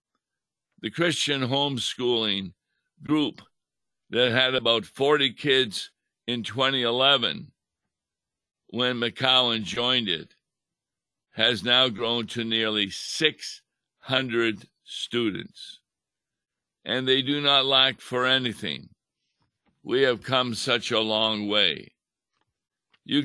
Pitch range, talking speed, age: 110-130 Hz, 95 wpm, 60-79